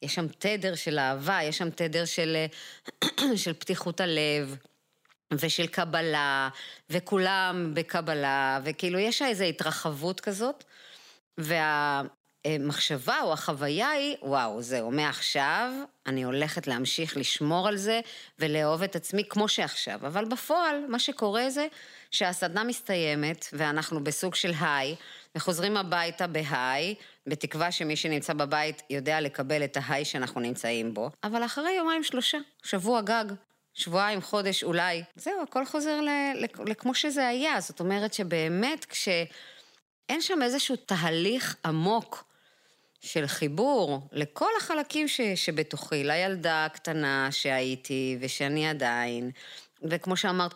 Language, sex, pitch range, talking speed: Hebrew, female, 155-215 Hz, 120 wpm